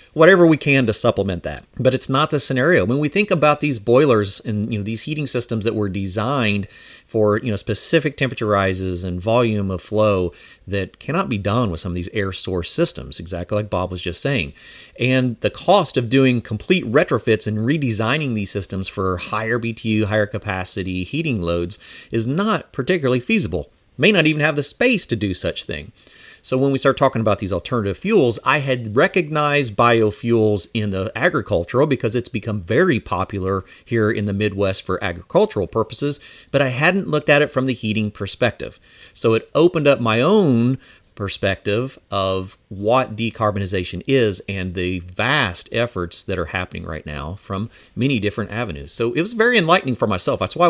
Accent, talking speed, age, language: American, 185 wpm, 40-59, English